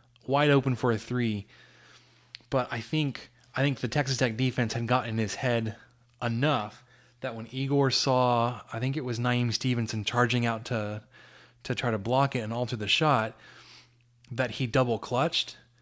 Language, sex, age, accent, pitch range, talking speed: English, male, 20-39, American, 115-130 Hz, 175 wpm